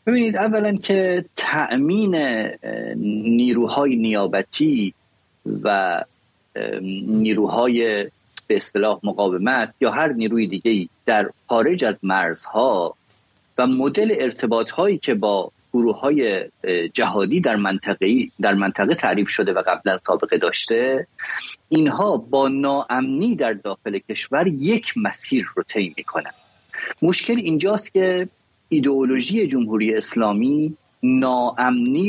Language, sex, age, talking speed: English, male, 30-49, 100 wpm